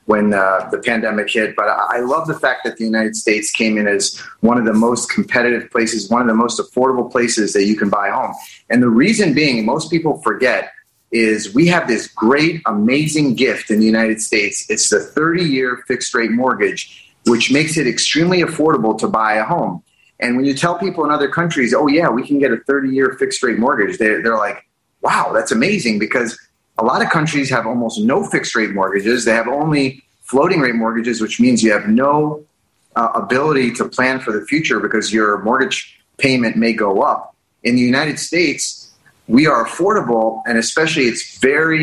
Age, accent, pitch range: 30-49, American, 115-150 Hz